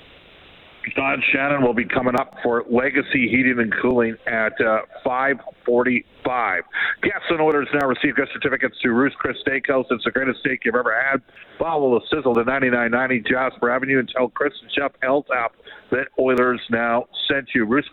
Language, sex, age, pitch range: English, male, 50-69, 120-140 Hz